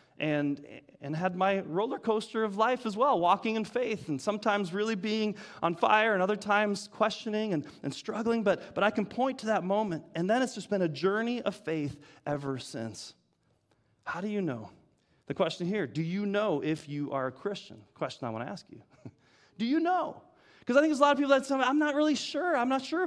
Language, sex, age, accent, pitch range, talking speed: English, male, 30-49, American, 170-225 Hz, 225 wpm